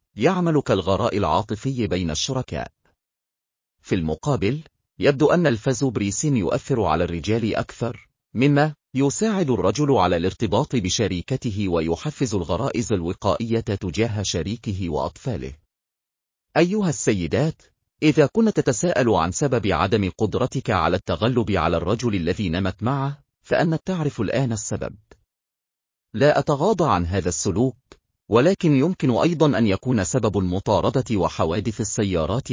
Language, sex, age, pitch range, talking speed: Arabic, male, 40-59, 90-130 Hz, 110 wpm